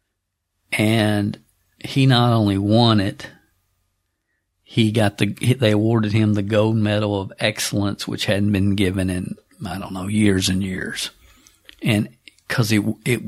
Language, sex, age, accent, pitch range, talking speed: English, male, 50-69, American, 95-110 Hz, 145 wpm